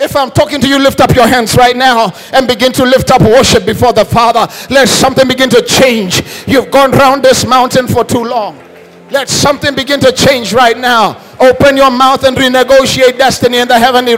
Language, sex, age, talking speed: English, male, 50-69, 205 wpm